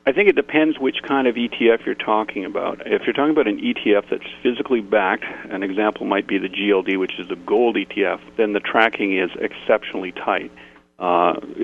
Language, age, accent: English, 40-59, American